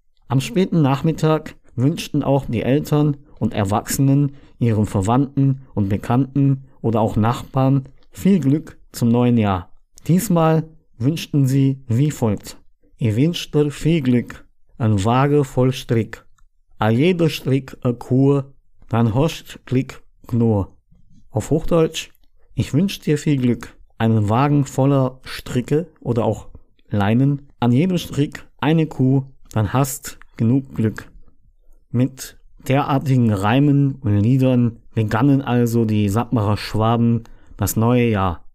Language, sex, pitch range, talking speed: German, male, 115-140 Hz, 120 wpm